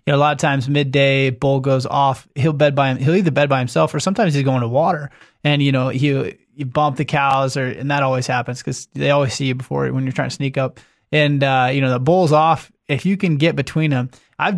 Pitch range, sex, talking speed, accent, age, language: 130-155 Hz, male, 270 wpm, American, 20-39, English